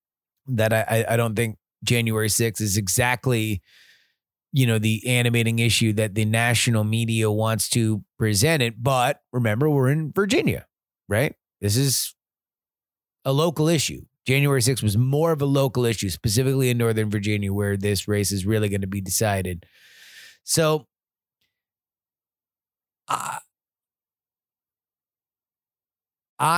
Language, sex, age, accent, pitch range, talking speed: English, male, 30-49, American, 105-135 Hz, 125 wpm